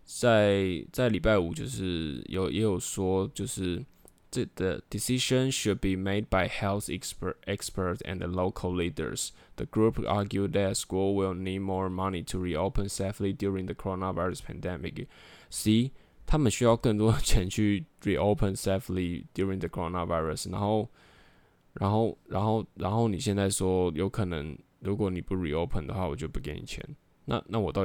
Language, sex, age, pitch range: Chinese, male, 10-29, 90-105 Hz